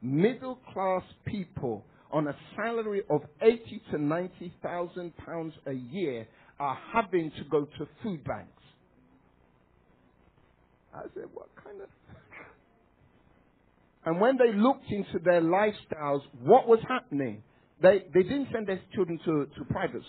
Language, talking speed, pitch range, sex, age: English, 135 wpm, 140-215 Hz, male, 50-69